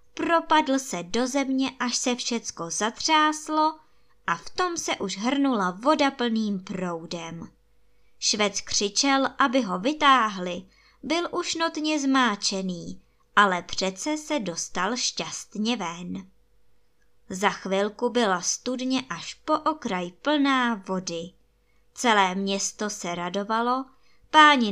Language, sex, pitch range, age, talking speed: Czech, male, 190-270 Hz, 20-39, 110 wpm